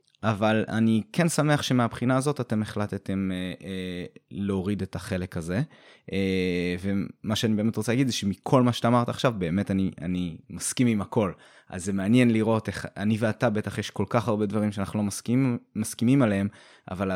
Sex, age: male, 20-39